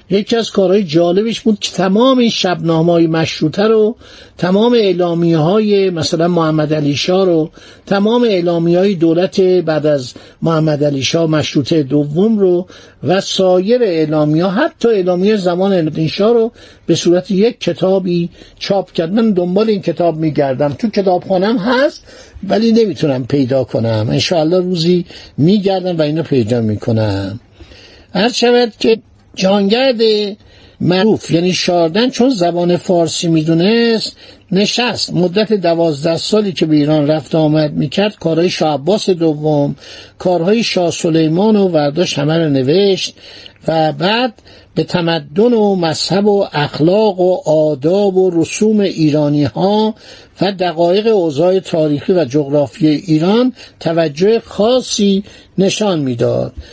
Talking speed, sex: 130 wpm, male